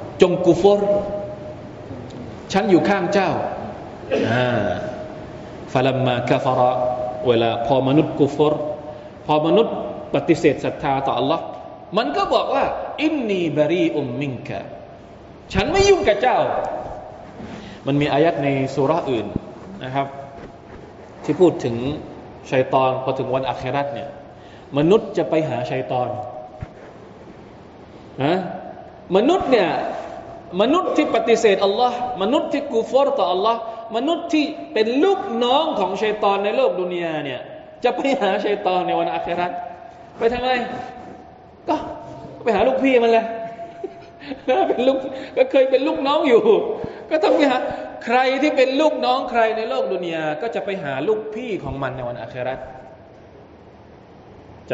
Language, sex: Thai, male